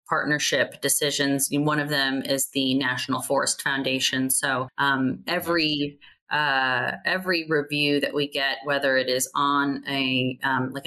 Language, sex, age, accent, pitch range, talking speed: English, female, 30-49, American, 140-180 Hz, 145 wpm